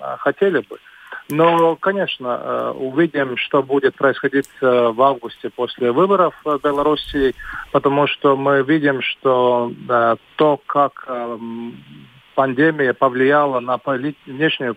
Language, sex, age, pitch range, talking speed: Russian, male, 40-59, 120-140 Hz, 115 wpm